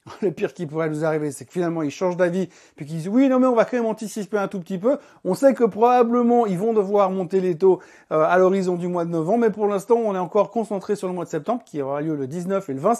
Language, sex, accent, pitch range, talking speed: French, male, French, 160-215 Hz, 300 wpm